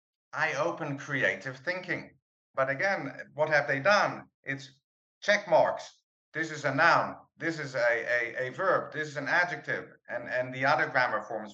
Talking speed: 165 wpm